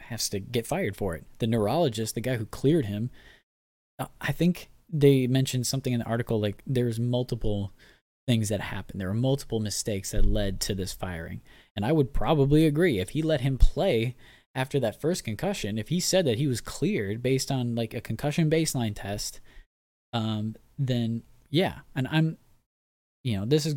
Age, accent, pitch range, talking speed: 20-39, American, 105-140 Hz, 185 wpm